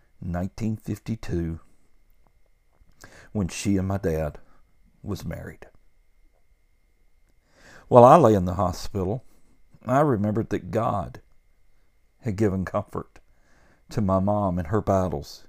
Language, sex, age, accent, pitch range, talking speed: English, male, 60-79, American, 80-110 Hz, 105 wpm